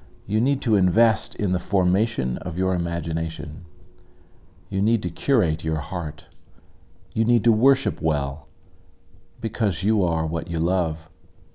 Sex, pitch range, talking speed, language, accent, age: male, 80-100 Hz, 140 wpm, English, American, 40-59